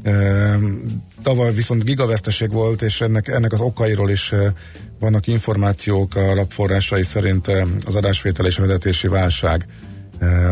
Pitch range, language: 95-110 Hz, Hungarian